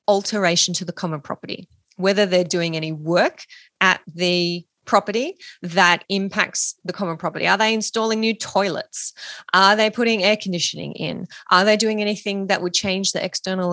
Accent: Australian